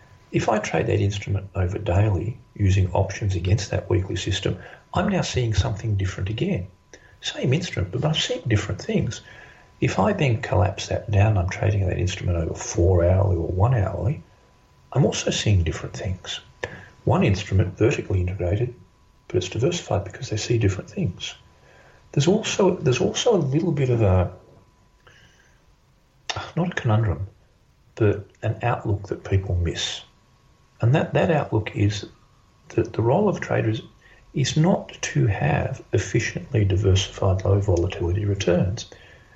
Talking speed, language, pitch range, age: 145 wpm, English, 95-120 Hz, 50-69